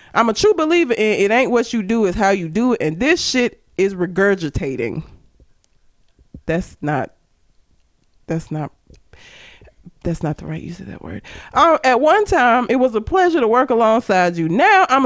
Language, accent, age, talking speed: English, American, 20-39, 185 wpm